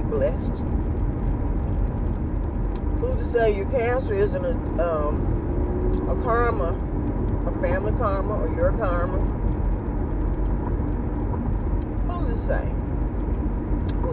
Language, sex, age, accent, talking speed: English, female, 40-59, American, 85 wpm